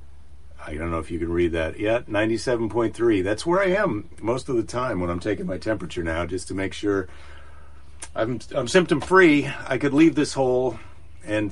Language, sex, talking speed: English, male, 195 wpm